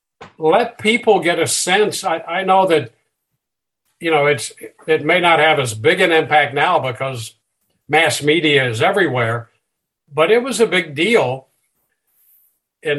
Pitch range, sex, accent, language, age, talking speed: 125-160 Hz, male, American, English, 60-79, 150 wpm